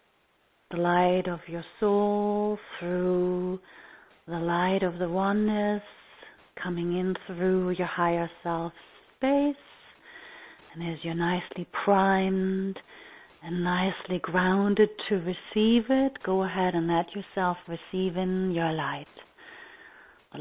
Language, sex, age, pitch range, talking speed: English, female, 40-59, 170-200 Hz, 115 wpm